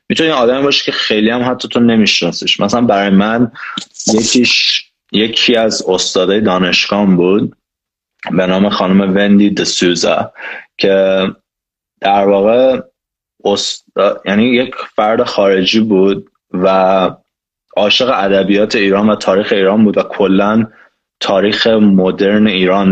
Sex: male